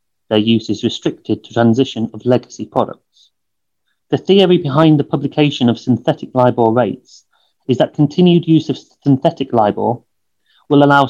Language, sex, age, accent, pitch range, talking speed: English, male, 30-49, British, 115-145 Hz, 145 wpm